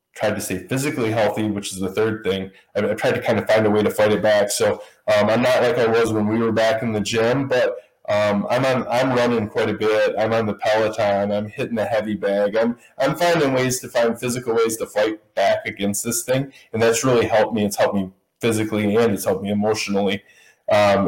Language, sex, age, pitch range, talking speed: English, male, 20-39, 100-120 Hz, 240 wpm